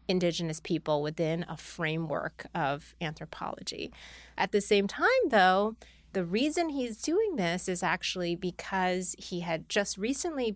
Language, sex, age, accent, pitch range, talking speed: English, female, 30-49, American, 165-205 Hz, 135 wpm